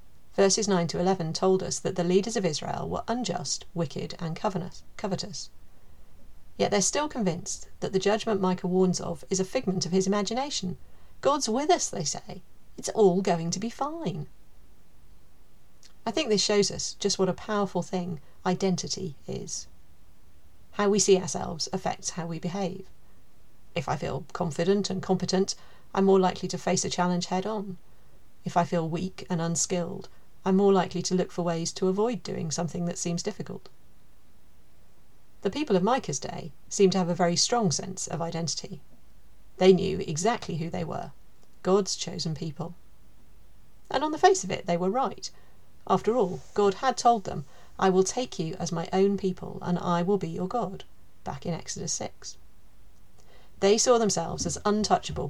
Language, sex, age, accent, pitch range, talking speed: English, female, 40-59, British, 170-195 Hz, 175 wpm